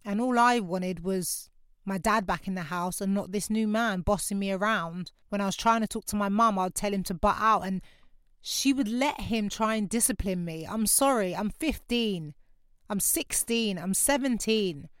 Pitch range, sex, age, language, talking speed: 180-215 Hz, female, 30-49, English, 210 wpm